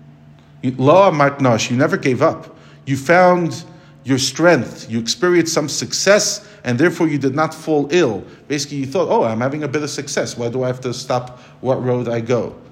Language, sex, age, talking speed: English, male, 40-59, 190 wpm